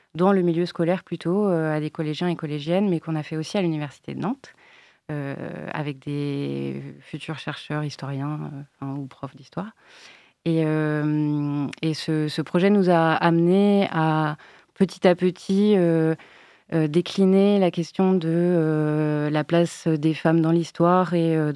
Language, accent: French, French